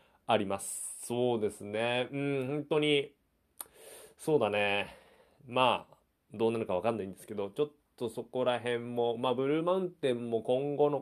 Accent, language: native, Japanese